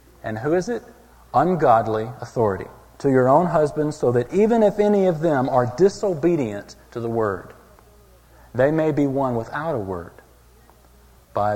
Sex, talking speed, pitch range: male, 155 wpm, 105-145 Hz